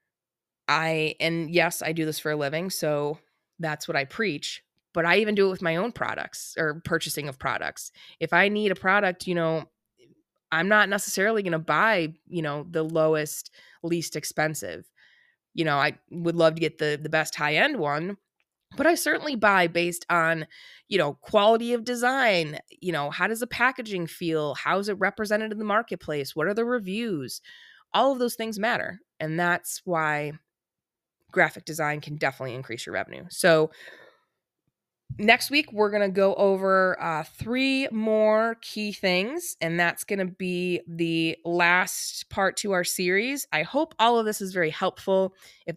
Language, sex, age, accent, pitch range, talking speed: English, female, 20-39, American, 160-200 Hz, 175 wpm